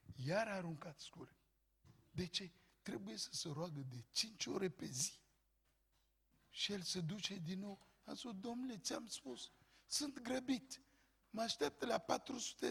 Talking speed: 150 wpm